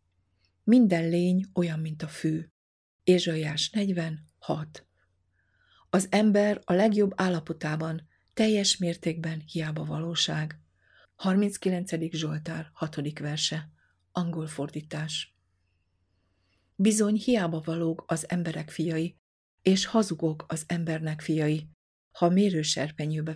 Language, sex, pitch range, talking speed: Hungarian, female, 150-175 Hz, 90 wpm